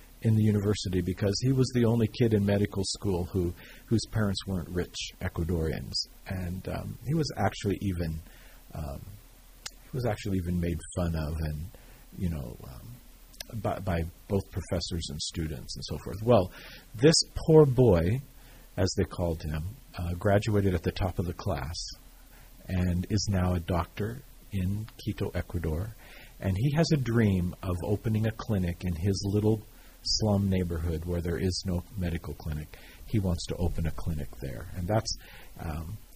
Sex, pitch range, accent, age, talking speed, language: male, 85-110 Hz, American, 50-69, 165 wpm, English